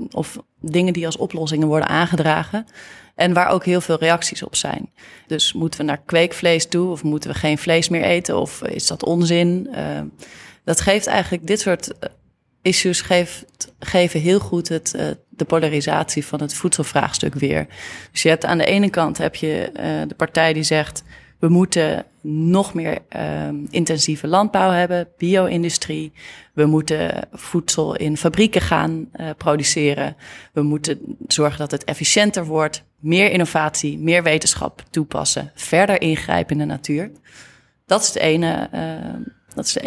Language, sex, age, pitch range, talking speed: Dutch, female, 30-49, 155-180 Hz, 155 wpm